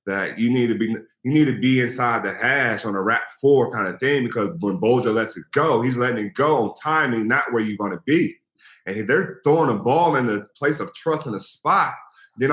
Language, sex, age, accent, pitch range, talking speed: English, male, 30-49, American, 115-155 Hz, 260 wpm